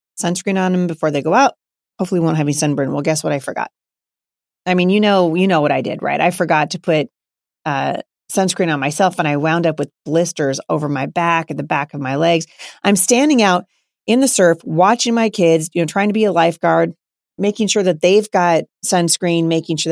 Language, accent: English, American